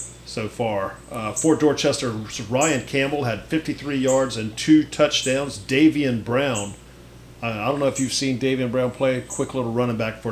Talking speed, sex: 175 wpm, male